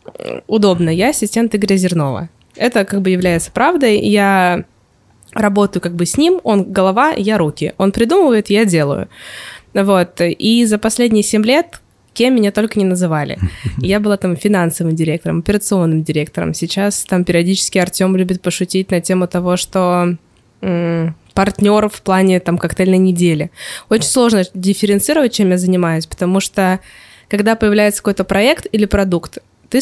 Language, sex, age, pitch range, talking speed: Russian, female, 20-39, 180-220 Hz, 150 wpm